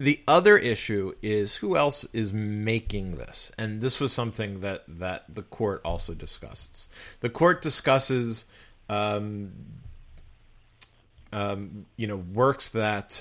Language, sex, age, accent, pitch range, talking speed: English, male, 40-59, American, 95-125 Hz, 125 wpm